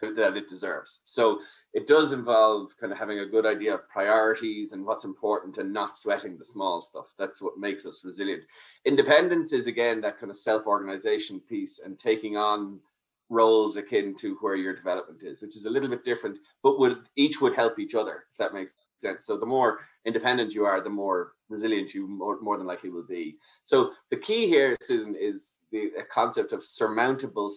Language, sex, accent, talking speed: English, male, Irish, 195 wpm